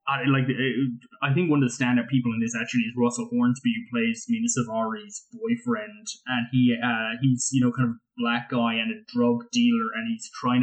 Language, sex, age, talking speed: English, male, 10-29, 220 wpm